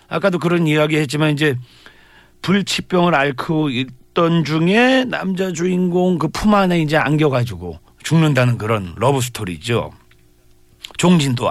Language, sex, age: Korean, male, 40-59